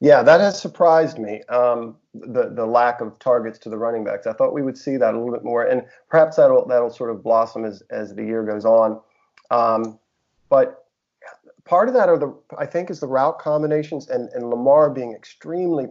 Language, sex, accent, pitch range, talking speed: English, male, American, 120-155 Hz, 210 wpm